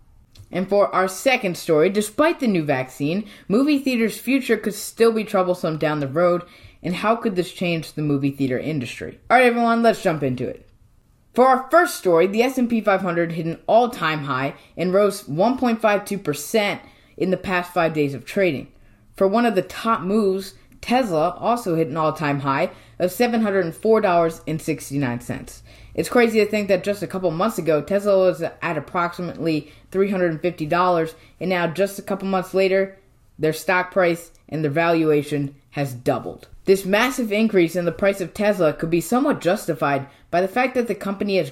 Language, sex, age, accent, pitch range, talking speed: English, female, 20-39, American, 150-200 Hz, 170 wpm